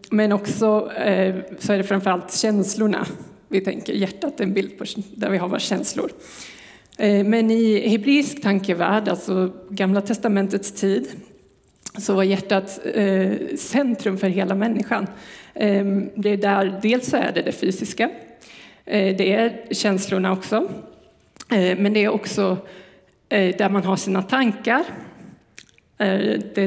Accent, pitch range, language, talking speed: native, 195-215 Hz, Swedish, 125 wpm